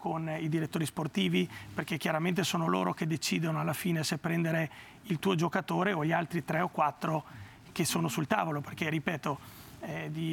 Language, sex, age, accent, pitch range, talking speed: Portuguese, male, 30-49, Italian, 160-190 Hz, 180 wpm